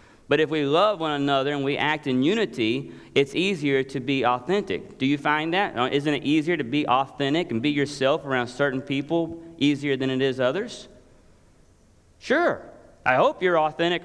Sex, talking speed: male, 180 wpm